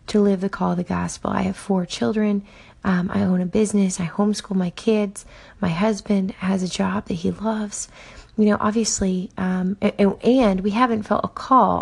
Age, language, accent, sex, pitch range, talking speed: 30-49, English, American, female, 180-205 Hz, 200 wpm